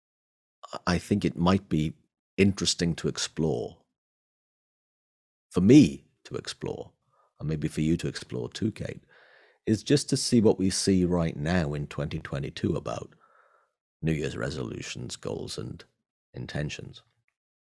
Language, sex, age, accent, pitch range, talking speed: English, male, 40-59, British, 75-100 Hz, 130 wpm